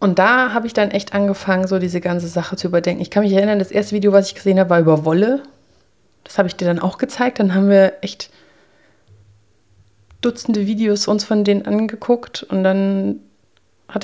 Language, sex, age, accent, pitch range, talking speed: German, female, 30-49, German, 165-200 Hz, 200 wpm